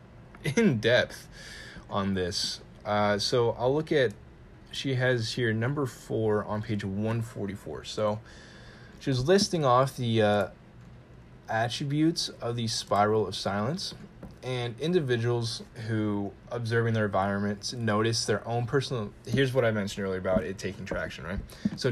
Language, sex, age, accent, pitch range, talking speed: English, male, 10-29, American, 105-120 Hz, 140 wpm